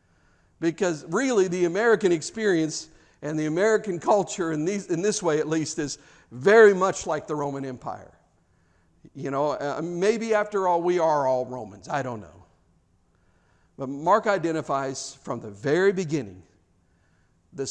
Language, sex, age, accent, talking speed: English, male, 50-69, American, 140 wpm